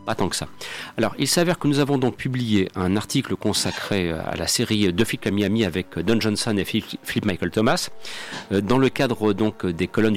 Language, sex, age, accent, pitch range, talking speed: French, male, 50-69, French, 115-175 Hz, 205 wpm